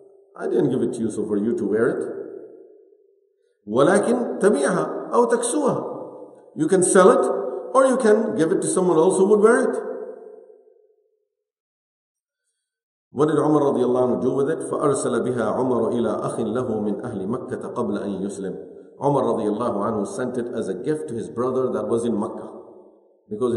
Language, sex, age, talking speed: English, male, 50-69, 120 wpm